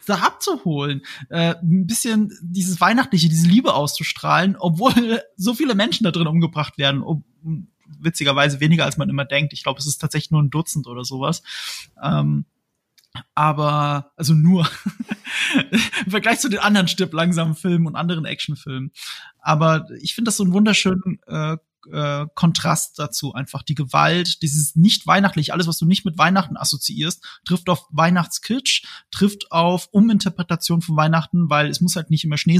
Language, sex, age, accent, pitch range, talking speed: German, male, 20-39, German, 150-190 Hz, 160 wpm